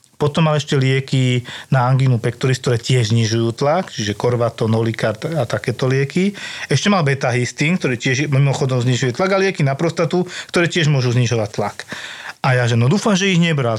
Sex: male